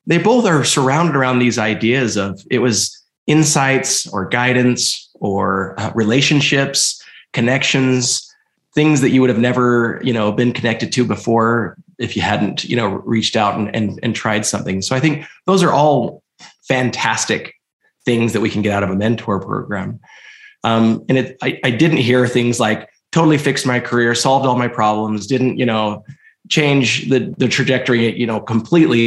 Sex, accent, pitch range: male, American, 110-140 Hz